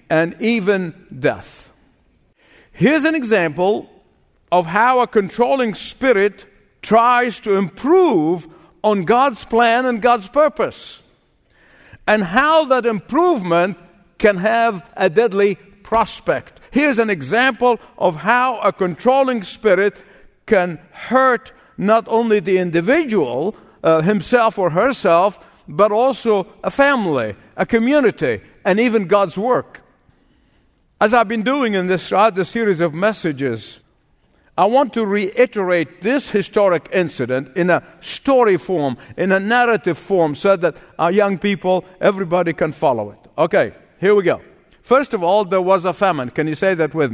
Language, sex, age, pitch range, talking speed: English, male, 50-69, 170-230 Hz, 135 wpm